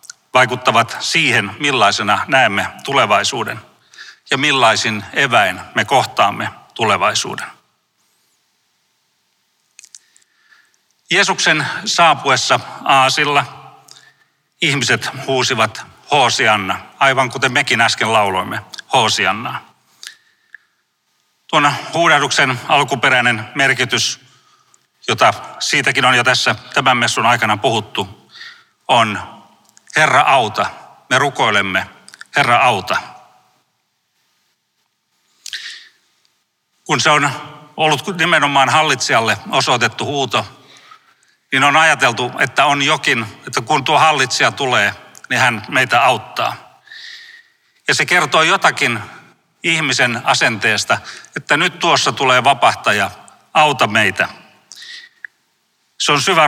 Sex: male